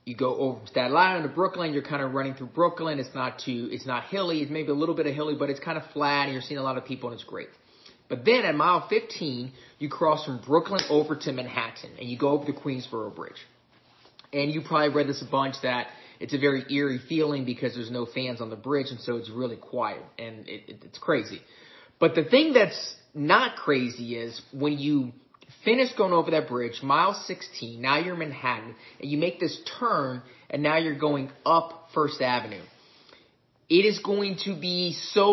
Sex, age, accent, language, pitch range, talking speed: male, 30-49, American, English, 130-165 Hz, 220 wpm